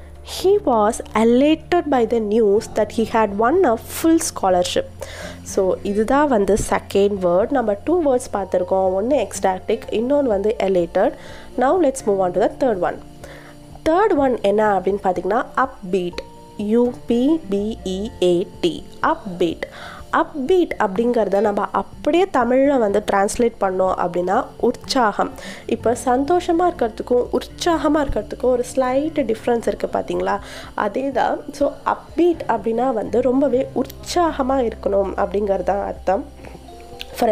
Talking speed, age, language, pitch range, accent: 130 wpm, 20-39, Tamil, 200-270 Hz, native